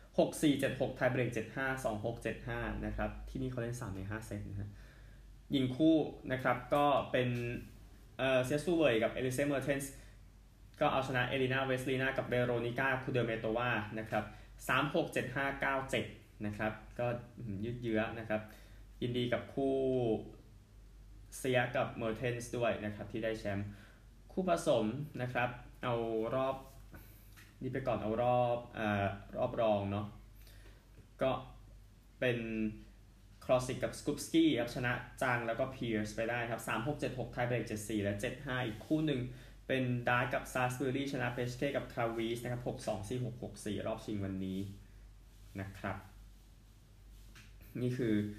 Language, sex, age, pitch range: Thai, male, 20-39, 105-125 Hz